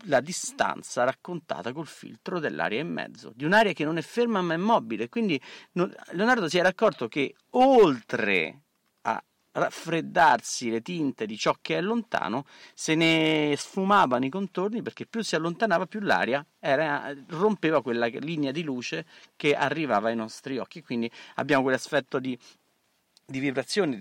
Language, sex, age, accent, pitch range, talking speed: Italian, male, 40-59, native, 125-195 Hz, 150 wpm